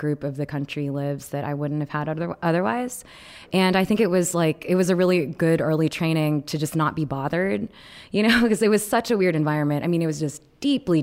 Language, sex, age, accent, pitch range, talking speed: English, female, 20-39, American, 145-170 Hz, 240 wpm